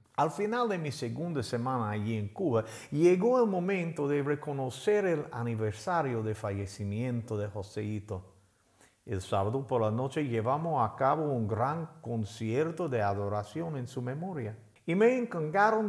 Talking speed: 145 wpm